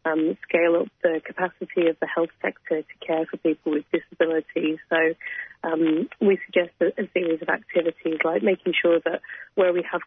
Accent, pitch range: British, 165-180 Hz